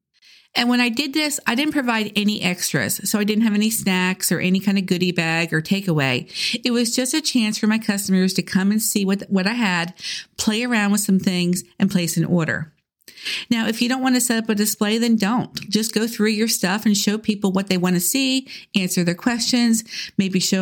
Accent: American